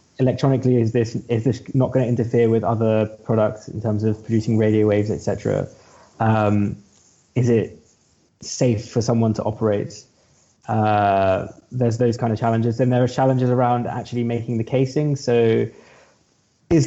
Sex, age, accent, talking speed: male, 20-39, British, 160 wpm